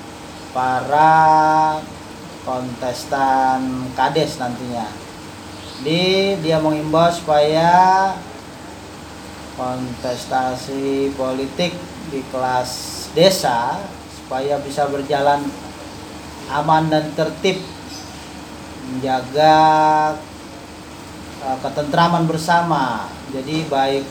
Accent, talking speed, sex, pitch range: native, 60 wpm, male, 130-155 Hz